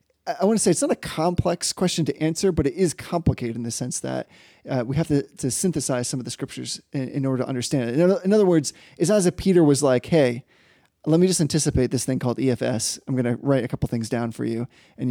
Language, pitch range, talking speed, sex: English, 130-165 Hz, 260 wpm, male